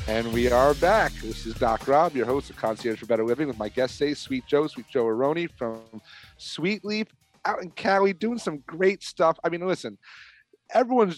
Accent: American